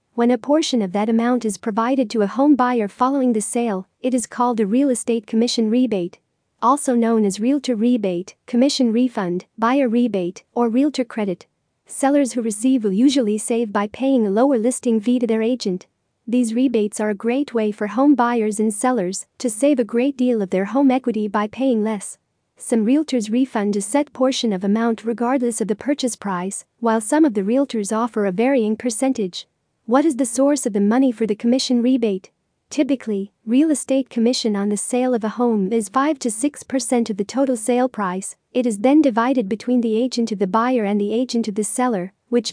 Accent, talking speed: American, 200 wpm